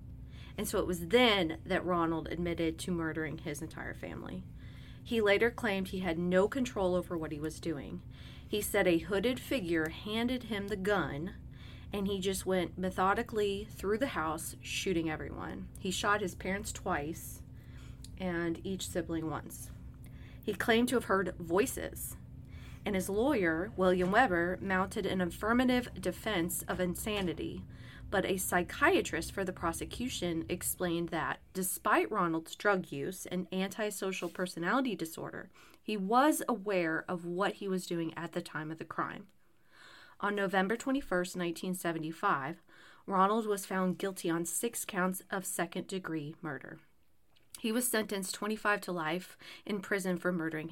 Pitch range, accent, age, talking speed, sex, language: 170-205 Hz, American, 30-49, 145 wpm, female, English